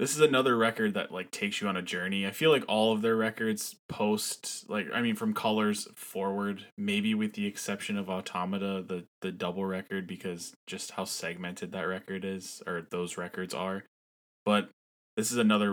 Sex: male